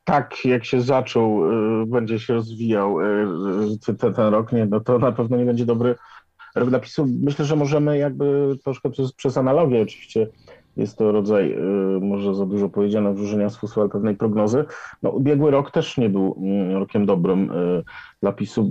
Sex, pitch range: male, 105-130 Hz